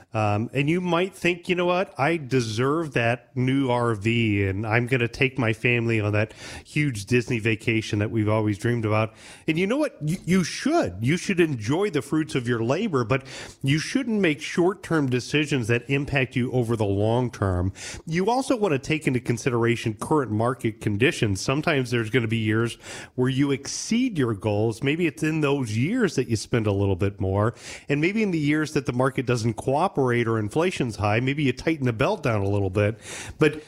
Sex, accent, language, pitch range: male, American, English, 115-150 Hz